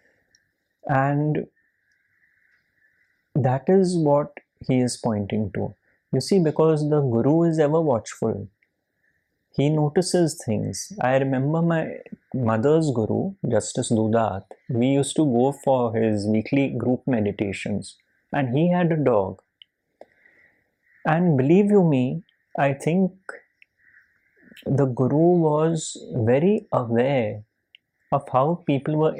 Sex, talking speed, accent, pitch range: male, 110 wpm, Indian, 120-160 Hz